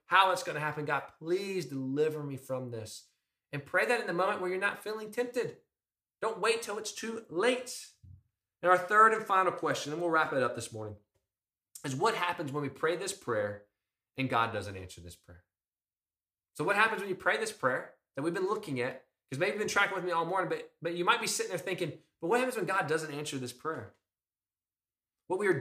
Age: 20-39